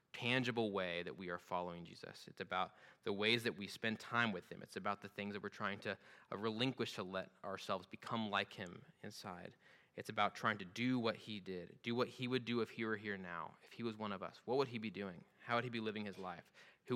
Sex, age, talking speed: male, 20-39, 250 wpm